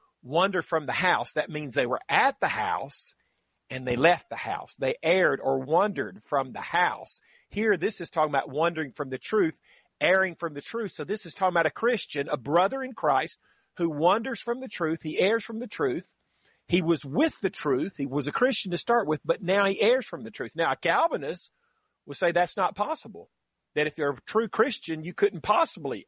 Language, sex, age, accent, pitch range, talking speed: English, male, 40-59, American, 155-225 Hz, 215 wpm